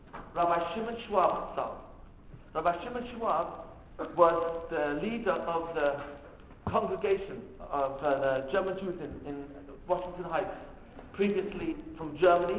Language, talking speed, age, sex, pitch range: English, 120 wpm, 50-69, male, 165-205 Hz